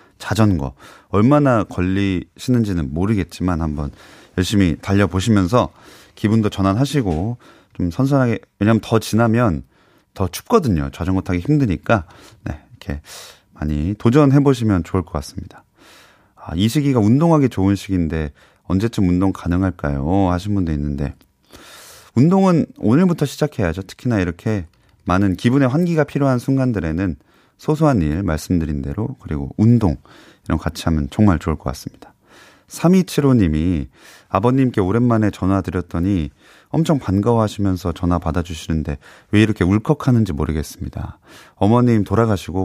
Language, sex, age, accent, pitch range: Korean, male, 30-49, native, 85-120 Hz